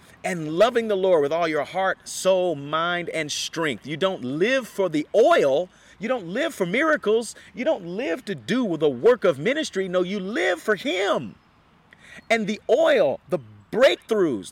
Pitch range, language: 150-220 Hz, English